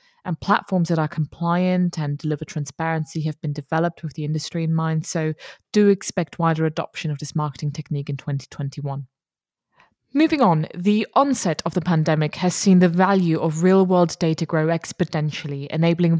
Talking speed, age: 165 wpm, 20-39